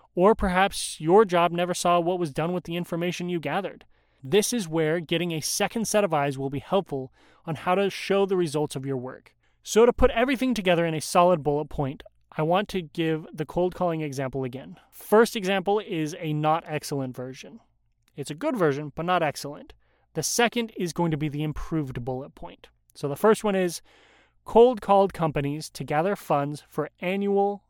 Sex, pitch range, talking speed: male, 145-195 Hz, 195 wpm